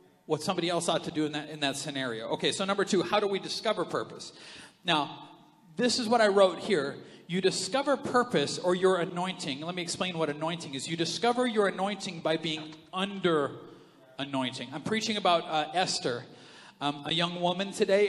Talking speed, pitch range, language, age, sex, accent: 190 wpm, 165-215 Hz, English, 40-59, male, American